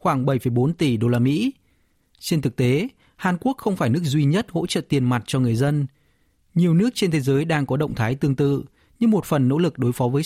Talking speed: 245 wpm